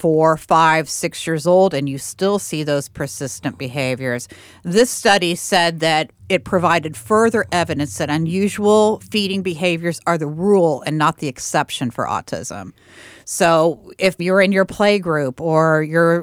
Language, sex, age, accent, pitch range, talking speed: English, female, 40-59, American, 140-185 Hz, 155 wpm